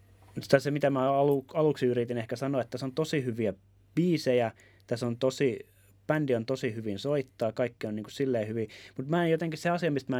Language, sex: Finnish, male